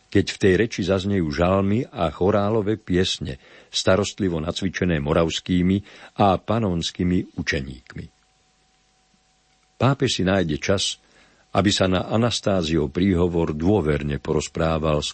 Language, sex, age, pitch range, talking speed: Slovak, male, 50-69, 75-95 Hz, 105 wpm